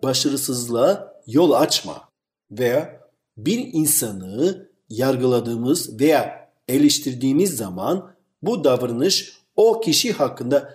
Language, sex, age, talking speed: Turkish, male, 50-69, 85 wpm